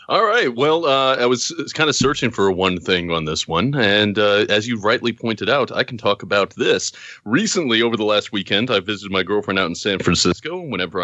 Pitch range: 95-120 Hz